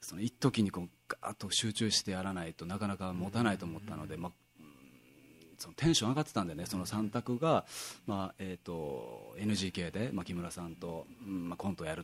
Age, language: 30-49, Japanese